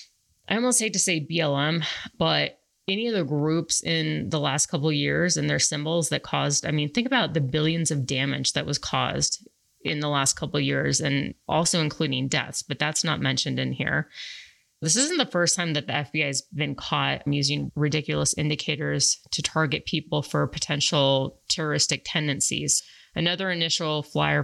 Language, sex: English, female